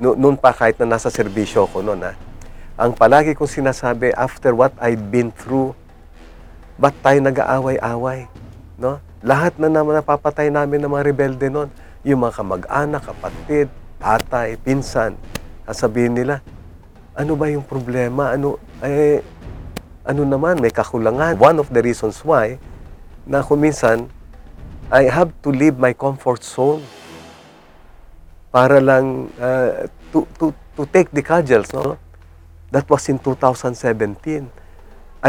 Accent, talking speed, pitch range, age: native, 130 wpm, 85-140 Hz, 50-69